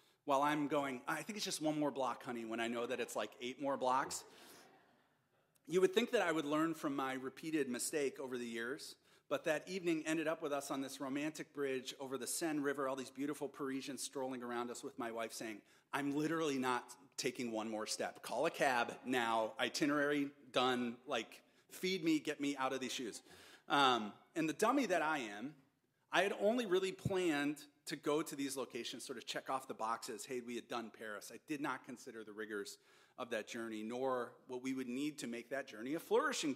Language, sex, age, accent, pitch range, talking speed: English, male, 30-49, American, 125-155 Hz, 215 wpm